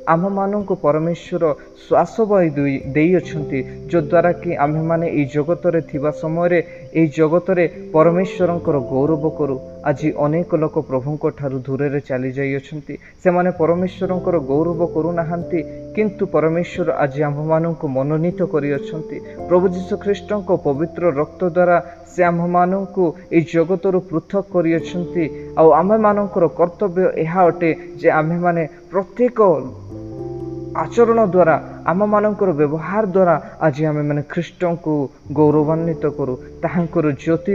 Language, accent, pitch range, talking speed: Hindi, native, 155-185 Hz, 100 wpm